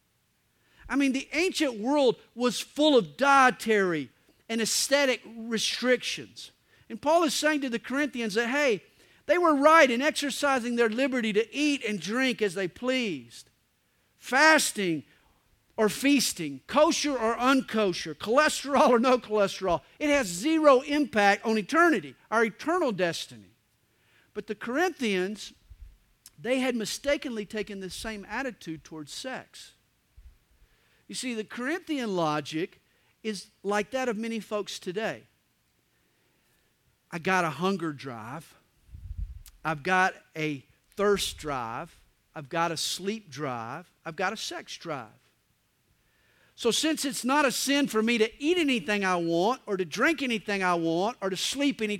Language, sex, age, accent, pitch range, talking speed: English, male, 50-69, American, 175-275 Hz, 140 wpm